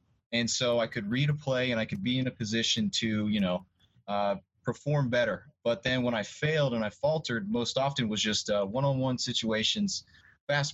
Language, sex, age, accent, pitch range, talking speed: English, male, 30-49, American, 110-130 Hz, 200 wpm